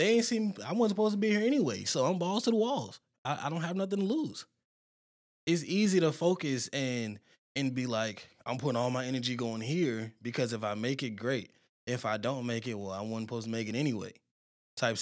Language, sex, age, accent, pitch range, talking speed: English, male, 20-39, American, 110-140 Hz, 230 wpm